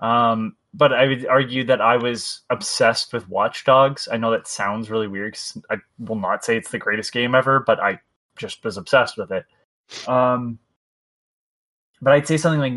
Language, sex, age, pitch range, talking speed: English, male, 20-39, 115-135 Hz, 195 wpm